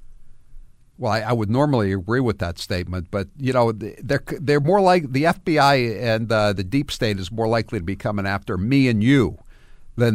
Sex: male